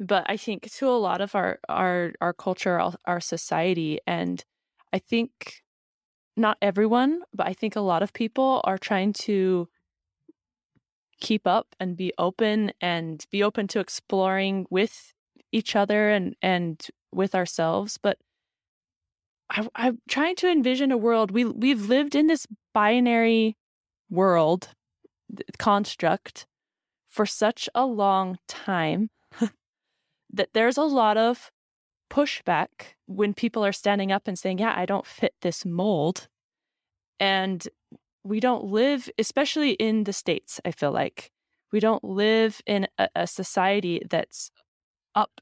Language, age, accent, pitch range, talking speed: English, 20-39, American, 185-230 Hz, 140 wpm